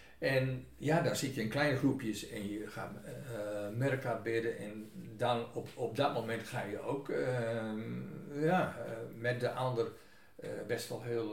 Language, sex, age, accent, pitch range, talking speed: Dutch, male, 60-79, Dutch, 105-130 Hz, 175 wpm